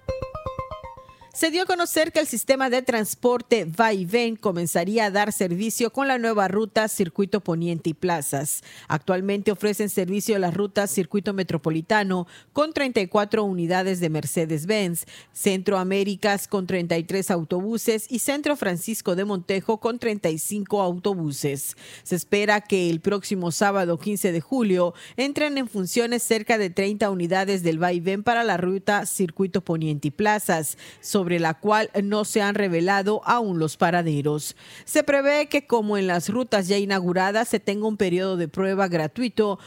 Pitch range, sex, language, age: 175-220 Hz, female, Spanish, 40-59